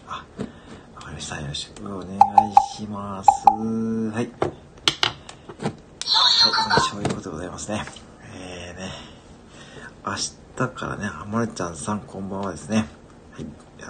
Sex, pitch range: male, 80-115 Hz